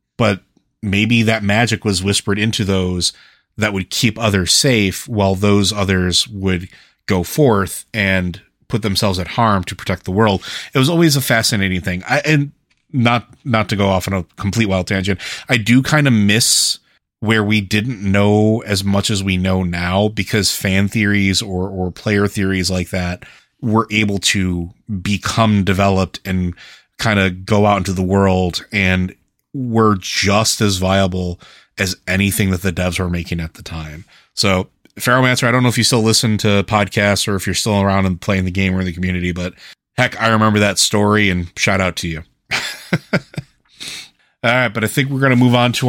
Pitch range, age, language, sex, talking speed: 95-115 Hz, 30-49, English, male, 185 wpm